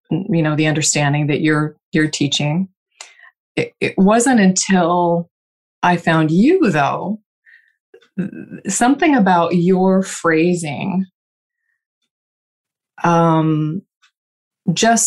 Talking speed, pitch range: 90 wpm, 155-190 Hz